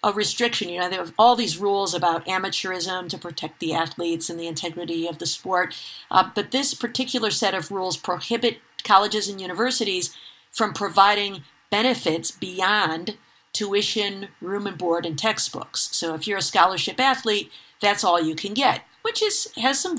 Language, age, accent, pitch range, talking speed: English, 50-69, American, 175-215 Hz, 170 wpm